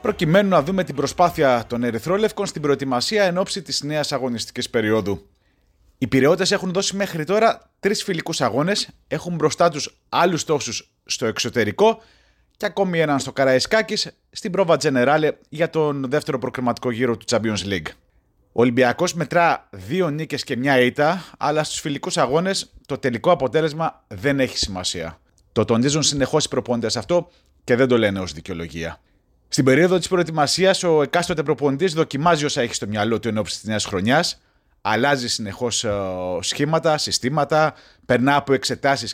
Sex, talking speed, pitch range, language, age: male, 155 wpm, 115-165 Hz, Greek, 30-49